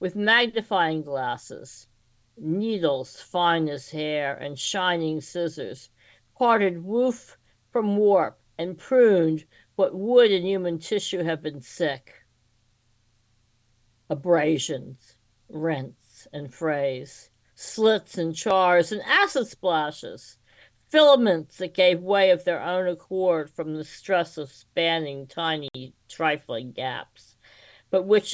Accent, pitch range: American, 135-190 Hz